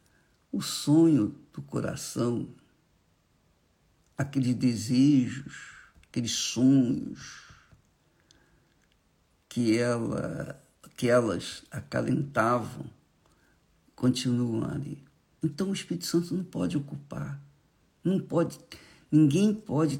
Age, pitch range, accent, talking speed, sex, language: 60-79, 125-210 Hz, Brazilian, 70 wpm, male, Portuguese